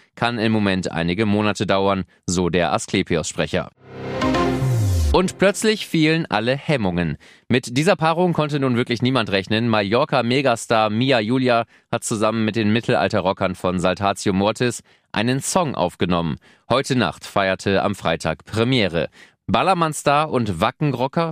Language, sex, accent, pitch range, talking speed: German, male, German, 100-130 Hz, 125 wpm